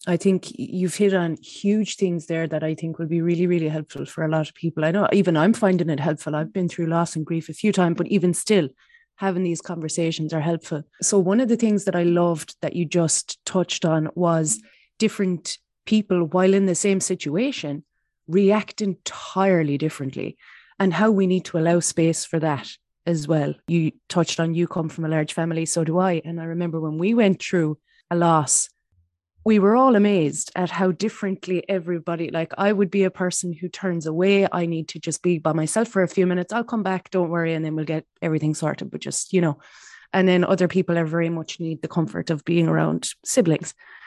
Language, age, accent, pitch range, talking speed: English, 30-49, Irish, 165-195 Hz, 215 wpm